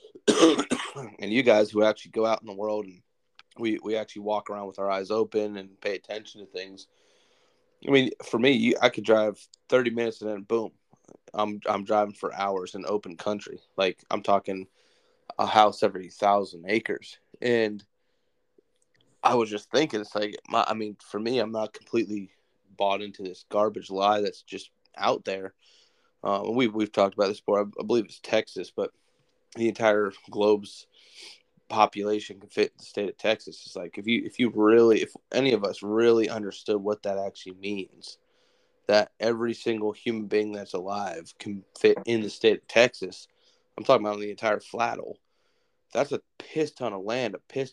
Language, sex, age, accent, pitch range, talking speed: English, male, 20-39, American, 100-115 Hz, 185 wpm